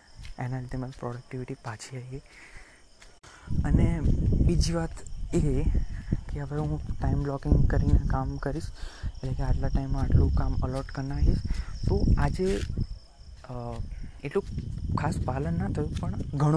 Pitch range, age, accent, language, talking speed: 110-145 Hz, 20-39, native, Gujarati, 100 wpm